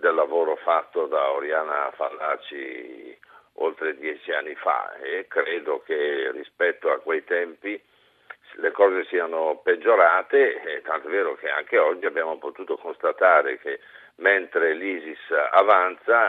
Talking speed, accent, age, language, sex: 125 wpm, native, 50-69, Italian, male